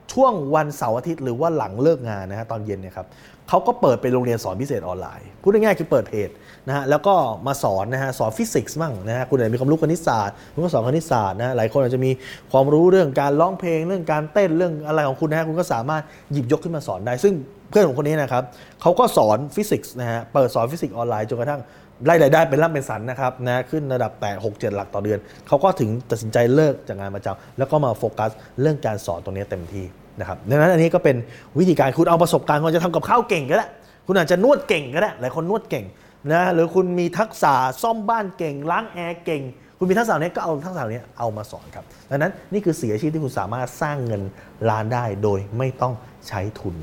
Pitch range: 110-160 Hz